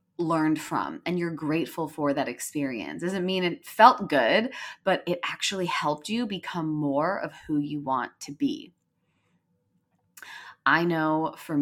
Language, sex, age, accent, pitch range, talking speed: English, female, 20-39, American, 150-180 Hz, 150 wpm